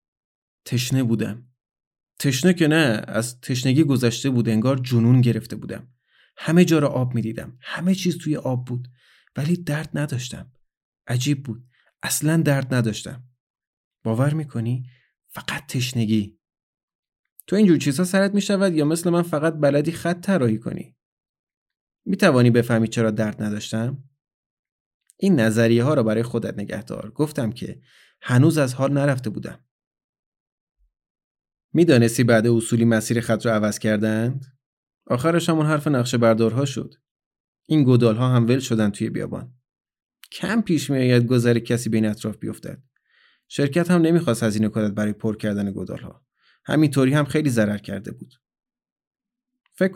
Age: 30-49